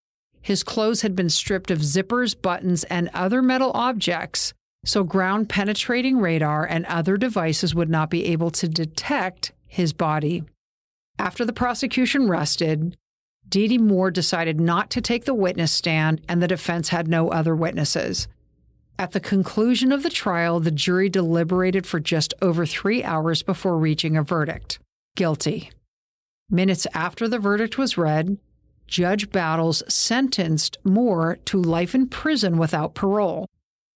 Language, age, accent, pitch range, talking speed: English, 50-69, American, 165-205 Hz, 145 wpm